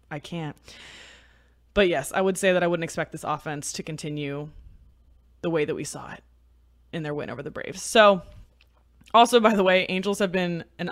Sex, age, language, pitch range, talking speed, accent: female, 20-39, English, 155-210 Hz, 200 wpm, American